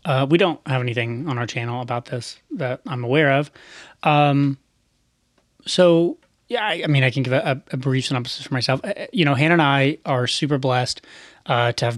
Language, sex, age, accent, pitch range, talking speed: English, male, 30-49, American, 120-145 Hz, 200 wpm